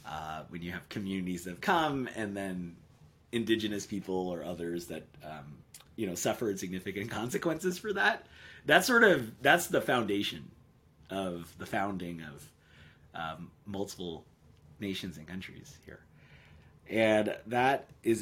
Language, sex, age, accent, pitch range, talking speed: English, male, 30-49, American, 85-110 Hz, 140 wpm